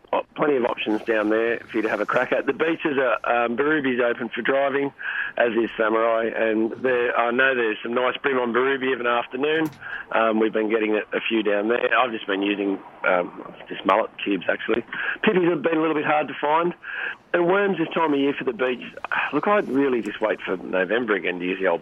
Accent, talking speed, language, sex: Australian, 230 wpm, English, male